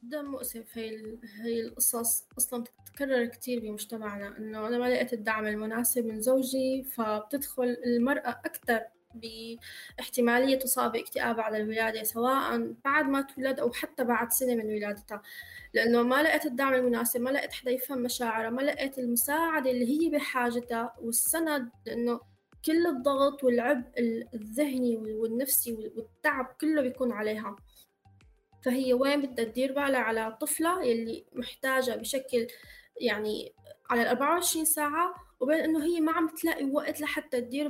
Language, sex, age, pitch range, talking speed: Arabic, female, 20-39, 230-285 Hz, 135 wpm